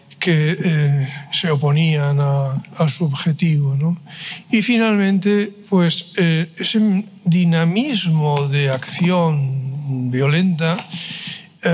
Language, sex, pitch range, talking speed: Italian, male, 150-175 Hz, 90 wpm